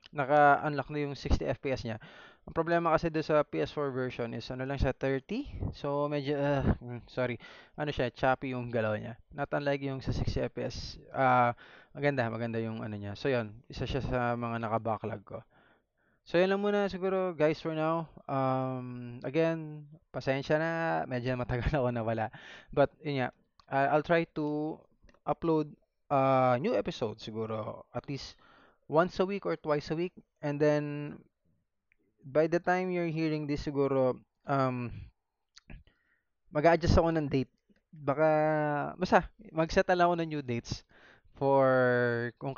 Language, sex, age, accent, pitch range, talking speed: Filipino, male, 20-39, native, 120-155 Hz, 150 wpm